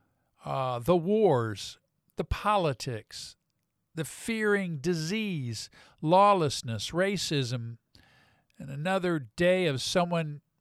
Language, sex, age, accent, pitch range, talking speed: English, male, 50-69, American, 125-170 Hz, 85 wpm